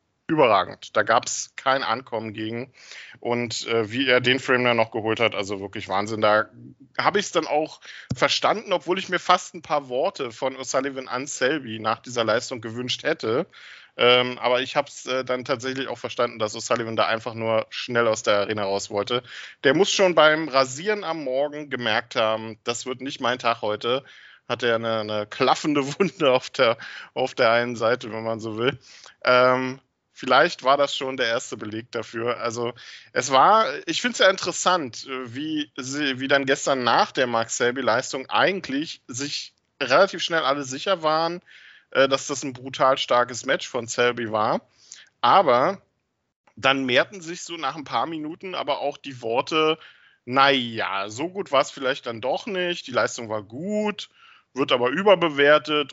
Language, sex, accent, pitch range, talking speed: German, male, German, 115-150 Hz, 175 wpm